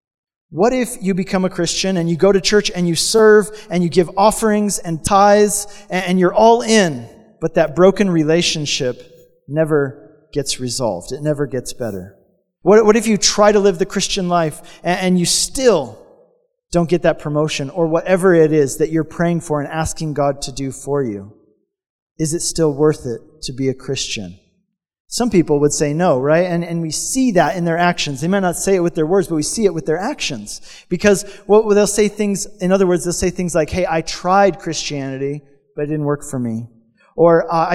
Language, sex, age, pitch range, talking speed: English, male, 40-59, 155-200 Hz, 205 wpm